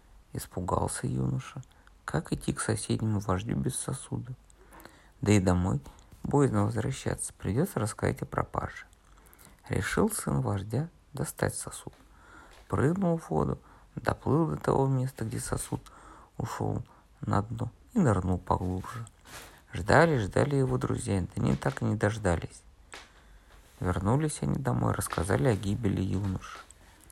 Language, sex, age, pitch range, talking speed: Russian, male, 50-69, 90-120 Hz, 120 wpm